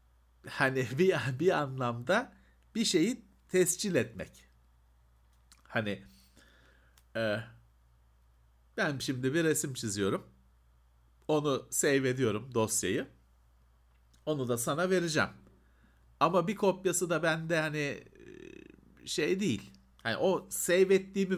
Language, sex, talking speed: Turkish, male, 95 wpm